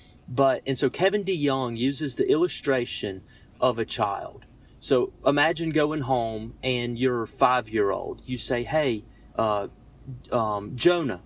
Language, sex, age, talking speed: English, male, 30-49, 135 wpm